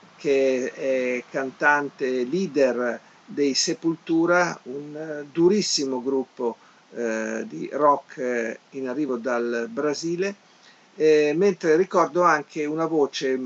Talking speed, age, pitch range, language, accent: 105 wpm, 50-69, 115-145 Hz, Italian, native